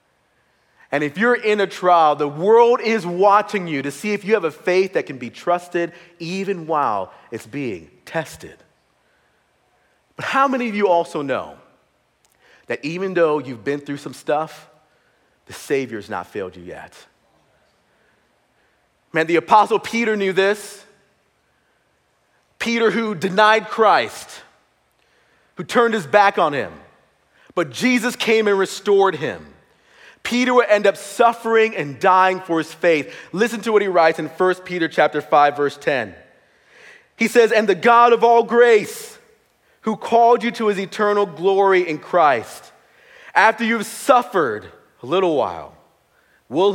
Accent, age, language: American, 40-59, English